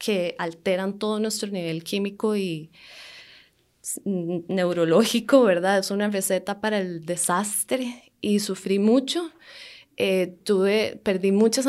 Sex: female